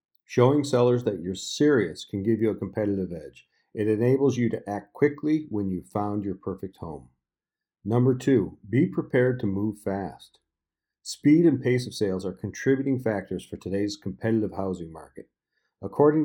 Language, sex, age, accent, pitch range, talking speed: English, male, 50-69, American, 100-130 Hz, 165 wpm